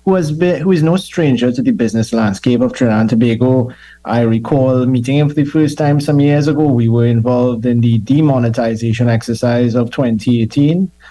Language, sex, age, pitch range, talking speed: English, male, 20-39, 120-140 Hz, 190 wpm